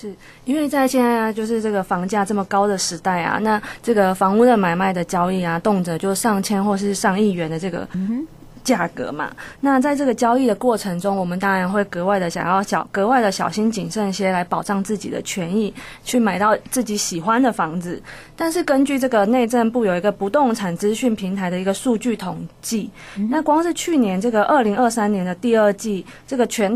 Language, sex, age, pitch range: Chinese, female, 20-39, 190-235 Hz